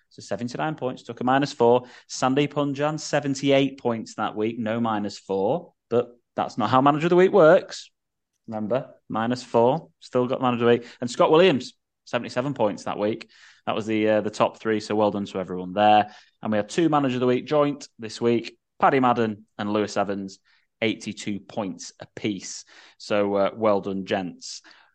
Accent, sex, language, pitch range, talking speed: British, male, English, 105-135 Hz, 190 wpm